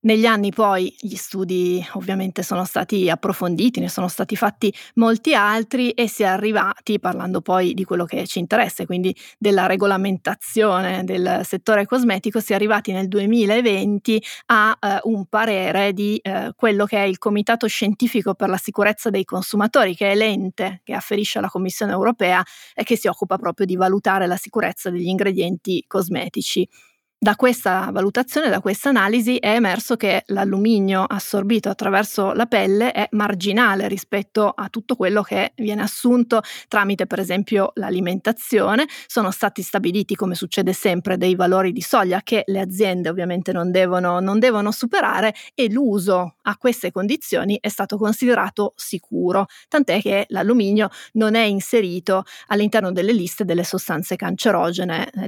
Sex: female